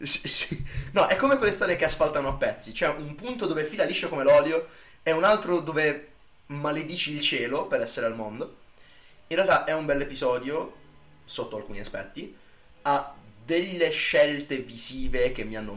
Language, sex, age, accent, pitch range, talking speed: Italian, male, 20-39, native, 110-155 Hz, 170 wpm